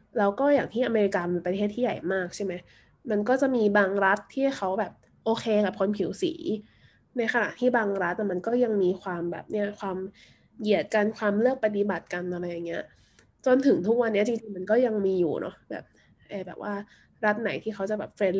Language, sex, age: Thai, female, 20-39